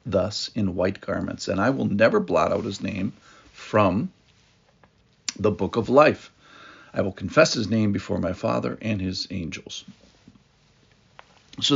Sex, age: male, 50-69